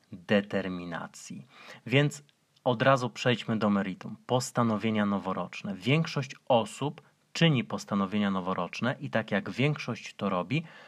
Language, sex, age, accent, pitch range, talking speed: Polish, male, 30-49, native, 110-145 Hz, 110 wpm